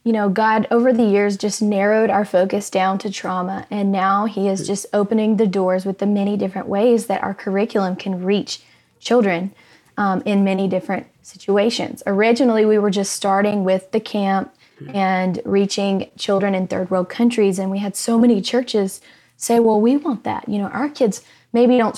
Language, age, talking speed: English, 20-39, 190 wpm